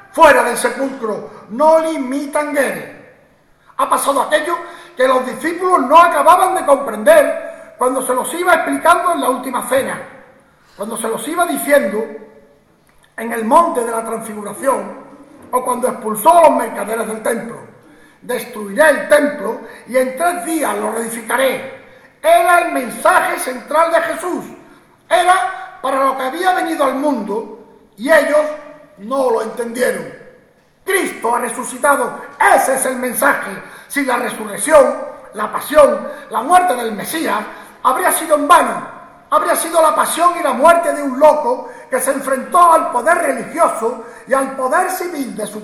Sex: male